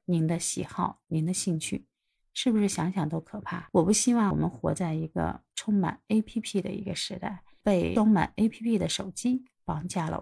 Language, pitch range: Chinese, 175-215 Hz